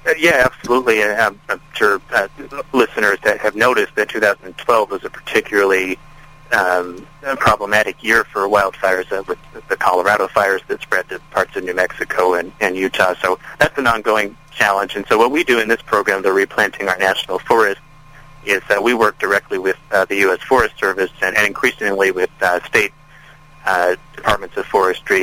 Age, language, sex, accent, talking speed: 40-59, English, male, American, 175 wpm